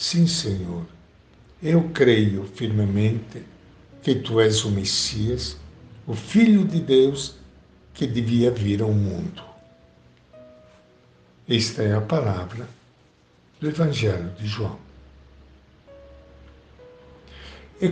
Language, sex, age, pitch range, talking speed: Portuguese, male, 60-79, 100-130 Hz, 95 wpm